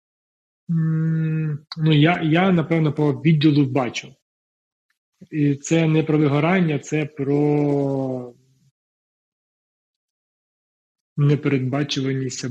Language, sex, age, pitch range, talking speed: Ukrainian, male, 30-49, 125-145 Hz, 75 wpm